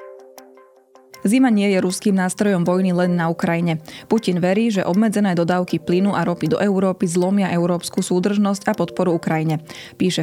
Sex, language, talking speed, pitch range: female, Slovak, 155 wpm, 170-195 Hz